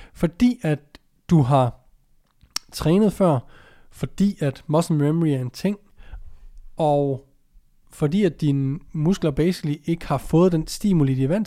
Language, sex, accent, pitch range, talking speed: Danish, male, native, 135-170 Hz, 140 wpm